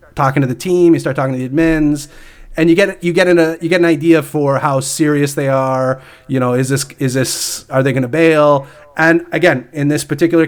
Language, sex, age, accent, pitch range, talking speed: English, male, 30-49, American, 135-165 Hz, 240 wpm